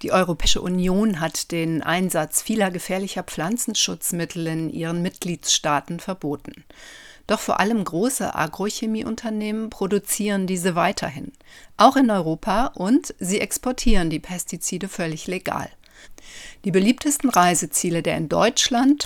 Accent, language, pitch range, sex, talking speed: German, German, 170-215 Hz, female, 115 wpm